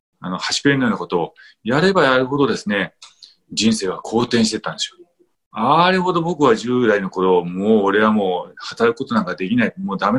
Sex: male